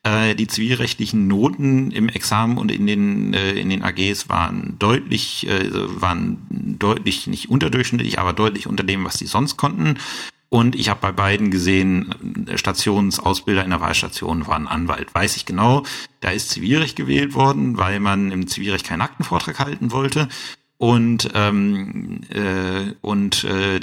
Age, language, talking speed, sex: 50-69, German, 150 wpm, male